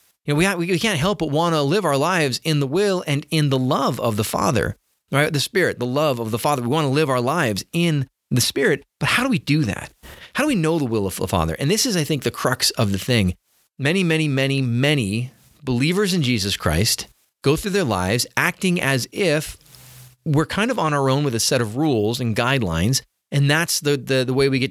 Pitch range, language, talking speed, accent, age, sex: 120-155 Hz, English, 245 wpm, American, 30-49, male